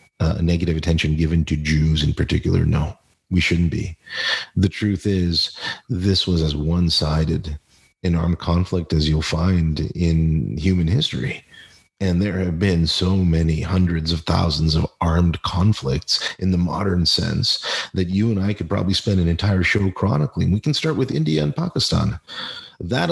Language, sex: English, male